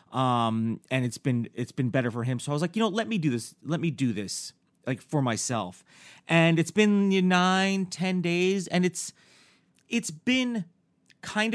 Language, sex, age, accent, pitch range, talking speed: English, male, 30-49, American, 135-180 Hz, 205 wpm